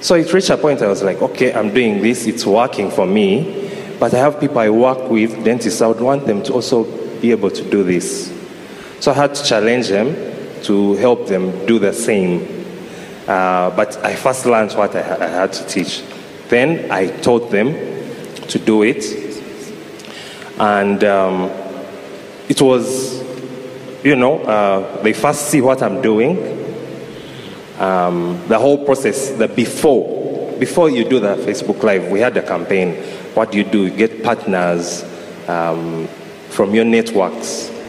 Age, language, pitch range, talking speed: 30-49, English, 95-130 Hz, 165 wpm